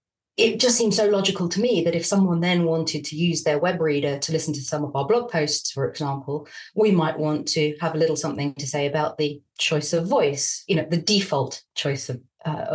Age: 30-49